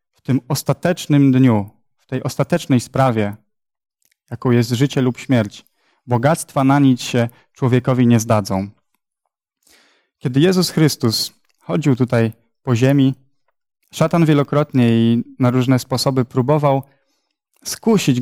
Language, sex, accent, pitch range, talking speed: Polish, male, native, 125-150 Hz, 115 wpm